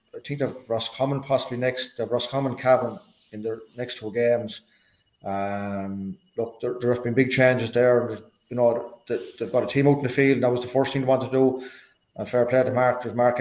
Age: 30-49